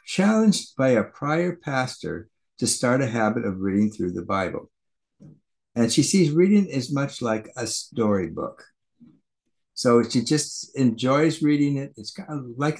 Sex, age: male, 60-79